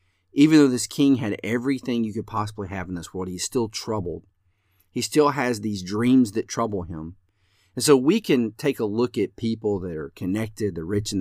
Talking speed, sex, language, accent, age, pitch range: 210 wpm, male, English, American, 40-59, 95-115 Hz